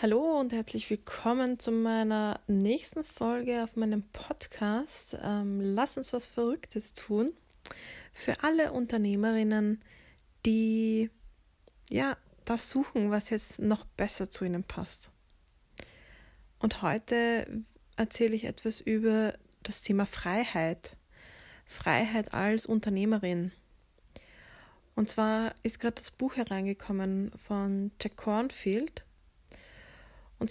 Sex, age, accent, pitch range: female, 20-39, German, 200-230 Hz